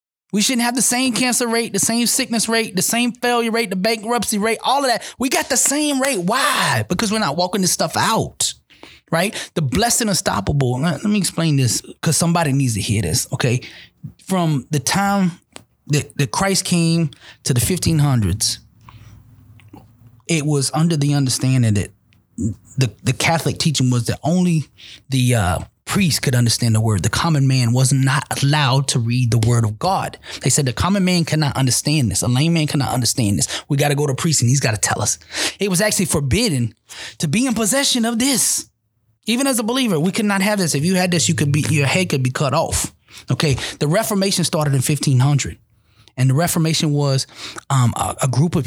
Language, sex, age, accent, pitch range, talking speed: English, male, 20-39, American, 125-175 Hz, 200 wpm